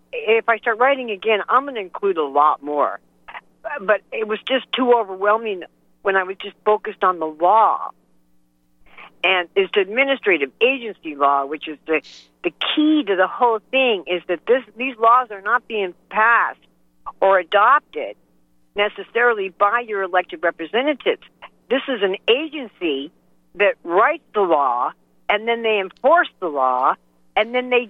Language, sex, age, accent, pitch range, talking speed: English, female, 50-69, American, 165-255 Hz, 160 wpm